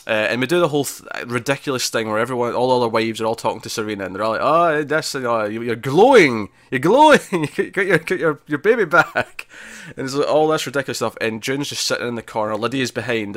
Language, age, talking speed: English, 20-39, 230 wpm